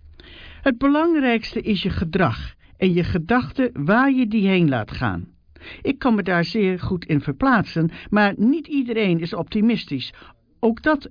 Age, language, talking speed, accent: 50-69, English, 155 wpm, Dutch